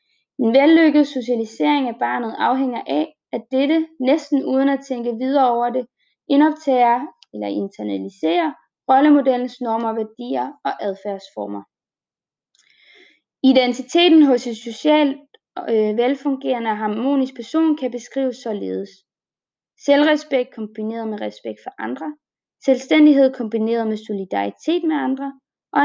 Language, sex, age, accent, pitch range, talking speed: Danish, female, 20-39, native, 230-295 Hz, 110 wpm